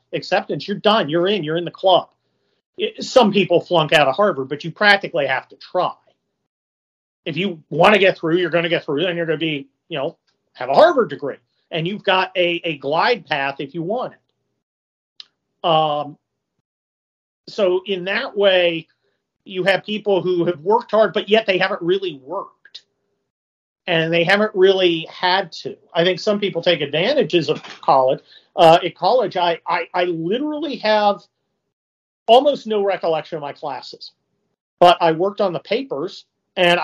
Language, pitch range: English, 145-185 Hz